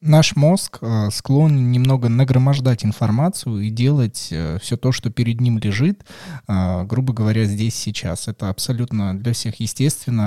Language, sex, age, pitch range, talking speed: Russian, male, 20-39, 105-130 Hz, 135 wpm